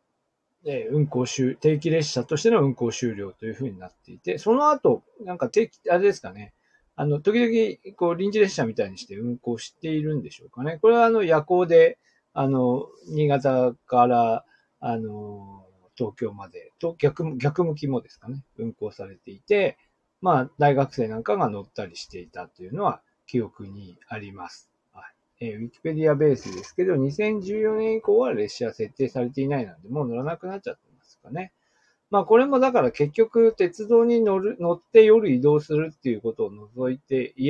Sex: male